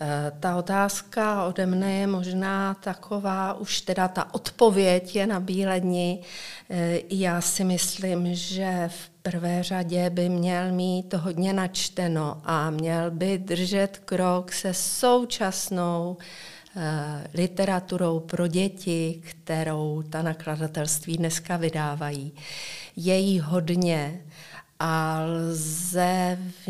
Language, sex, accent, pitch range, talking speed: Czech, female, native, 165-185 Hz, 110 wpm